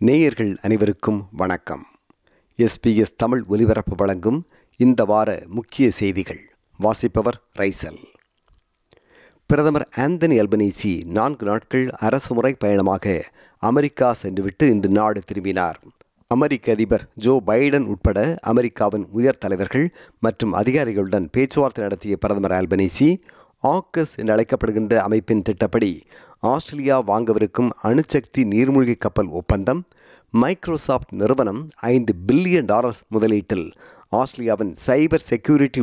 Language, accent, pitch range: Tamil, native, 105-135 Hz